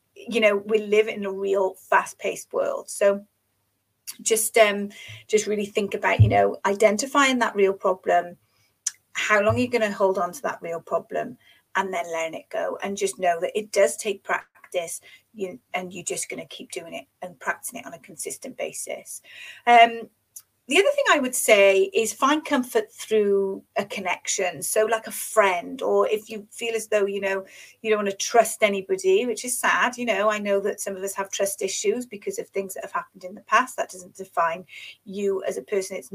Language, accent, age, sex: English, British, 30-49, female